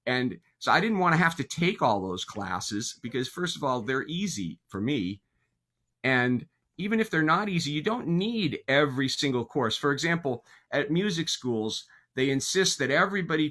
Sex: male